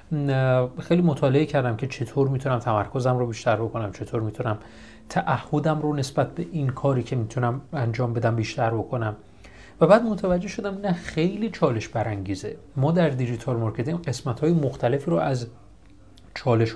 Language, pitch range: Persian, 120-170 Hz